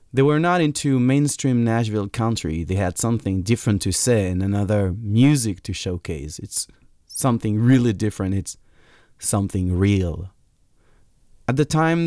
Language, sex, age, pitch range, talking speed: English, male, 30-49, 100-140 Hz, 140 wpm